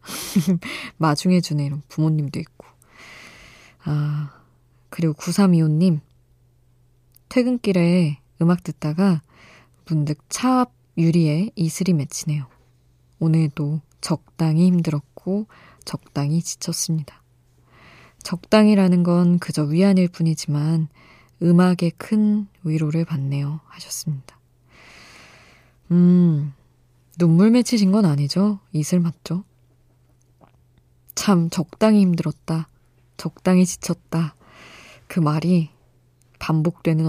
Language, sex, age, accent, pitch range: Korean, female, 20-39, native, 140-180 Hz